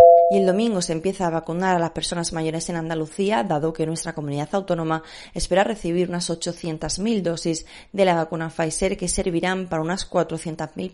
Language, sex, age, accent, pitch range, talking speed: Spanish, female, 20-39, Spanish, 160-185 Hz, 175 wpm